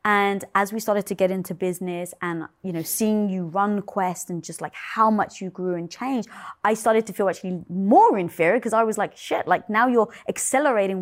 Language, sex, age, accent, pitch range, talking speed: English, female, 20-39, British, 185-260 Hz, 220 wpm